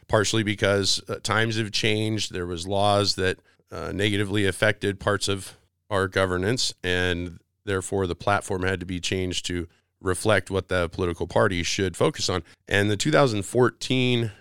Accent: American